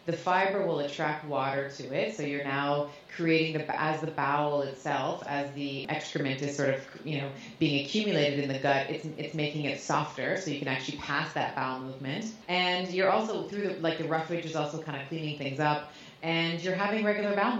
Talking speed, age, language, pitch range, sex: 210 wpm, 30-49, English, 140-165 Hz, female